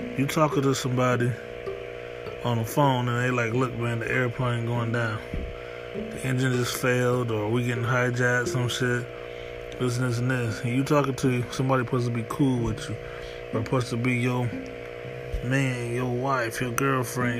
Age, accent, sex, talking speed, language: 20-39, American, male, 175 wpm, English